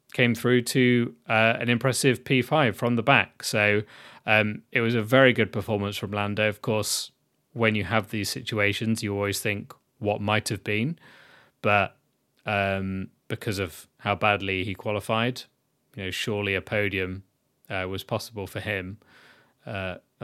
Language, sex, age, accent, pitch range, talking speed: English, male, 20-39, British, 100-115 Hz, 155 wpm